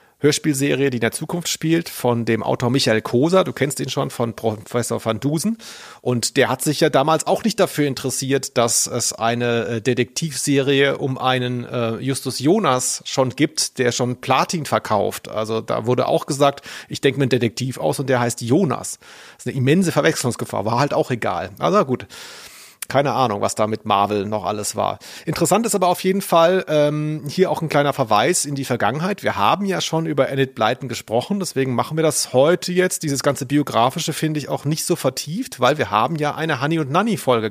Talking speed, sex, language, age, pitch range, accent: 200 wpm, male, German, 40-59, 125-160 Hz, German